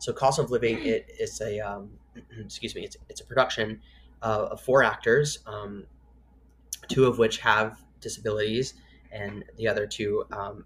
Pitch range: 105-135 Hz